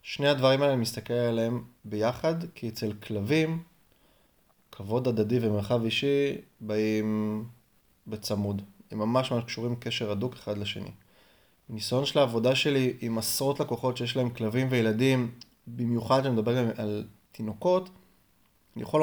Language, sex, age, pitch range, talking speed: Hebrew, male, 20-39, 110-135 Hz, 130 wpm